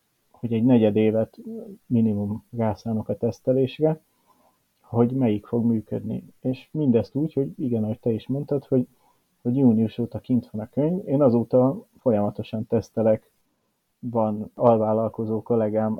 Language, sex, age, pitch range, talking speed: Hungarian, male, 30-49, 110-125 Hz, 135 wpm